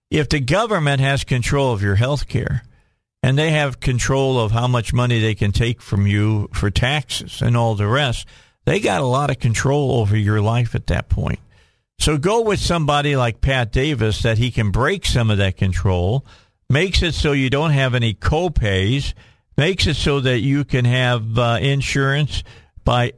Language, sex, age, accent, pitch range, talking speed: English, male, 50-69, American, 110-140 Hz, 190 wpm